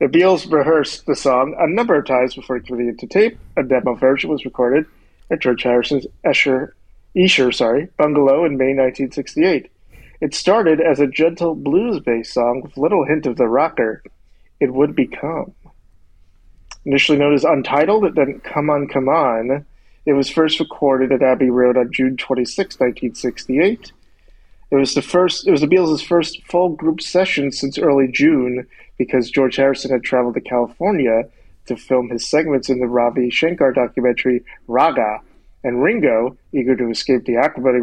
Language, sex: English, male